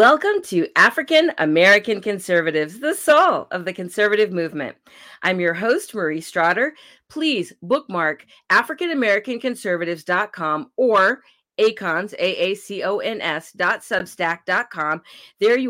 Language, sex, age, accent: English, female, 40-59, American